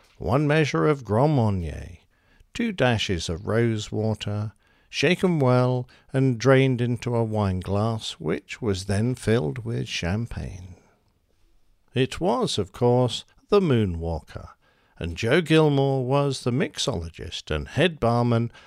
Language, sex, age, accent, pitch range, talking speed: English, male, 60-79, British, 95-130 Hz, 125 wpm